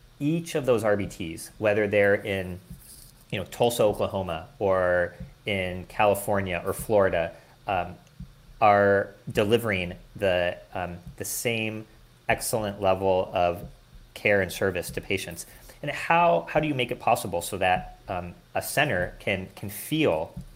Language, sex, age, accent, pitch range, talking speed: English, male, 30-49, American, 90-120 Hz, 135 wpm